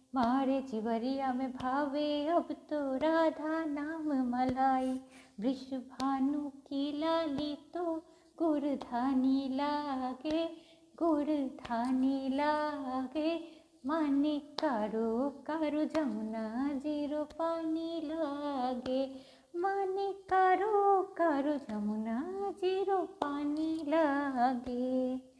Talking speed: 70 wpm